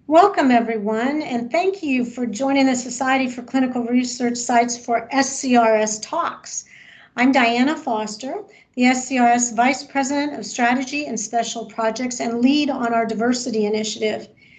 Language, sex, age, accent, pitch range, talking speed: English, female, 50-69, American, 225-265 Hz, 140 wpm